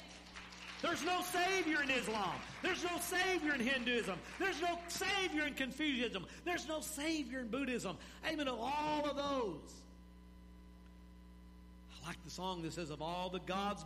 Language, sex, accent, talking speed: English, male, American, 150 wpm